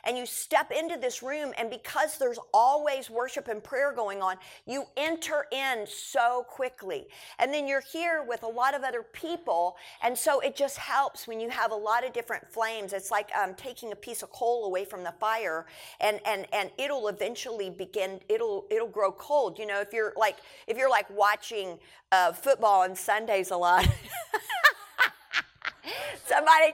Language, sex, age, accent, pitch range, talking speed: English, female, 50-69, American, 215-310 Hz, 180 wpm